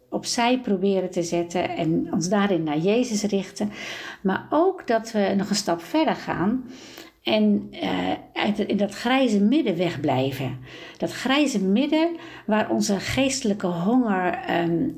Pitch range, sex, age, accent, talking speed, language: 195-250 Hz, female, 60-79, Dutch, 140 wpm, Dutch